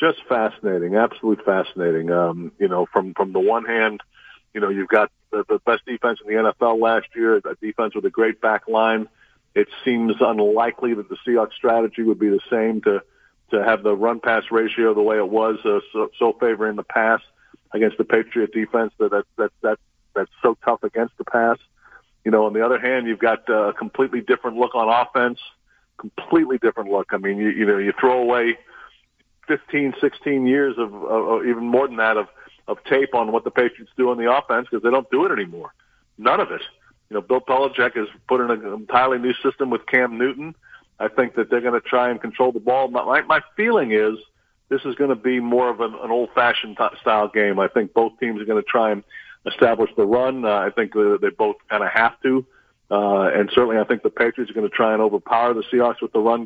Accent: American